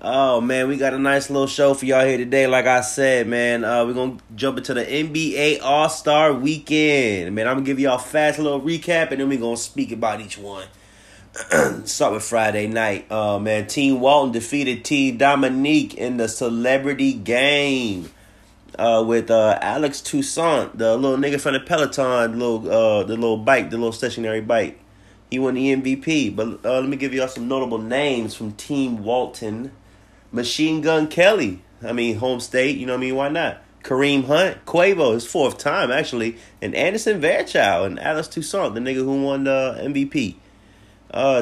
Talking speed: 190 wpm